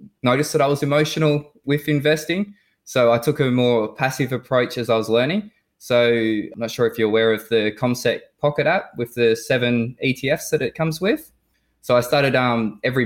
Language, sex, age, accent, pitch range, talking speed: English, male, 20-39, Australian, 115-130 Hz, 200 wpm